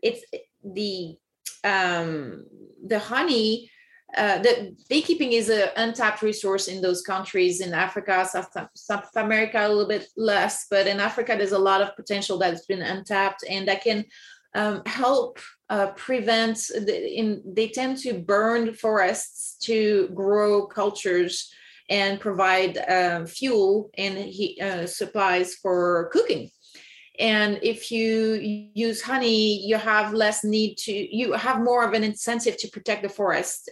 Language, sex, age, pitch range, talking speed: English, female, 30-49, 190-225 Hz, 145 wpm